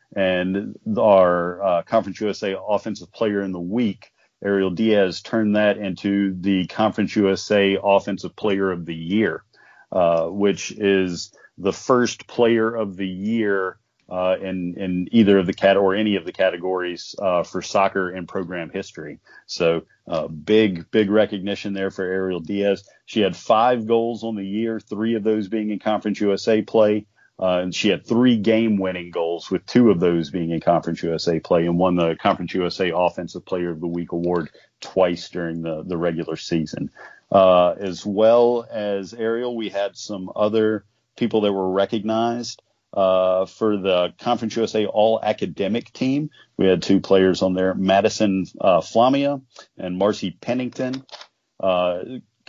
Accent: American